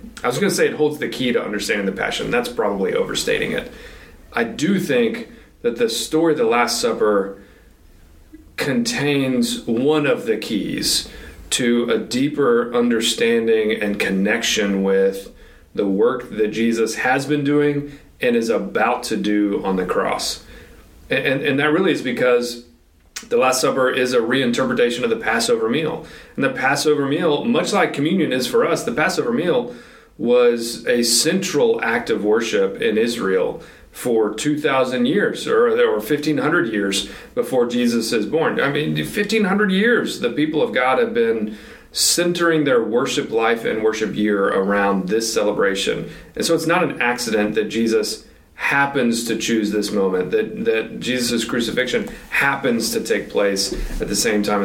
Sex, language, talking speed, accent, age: male, English, 165 wpm, American, 40-59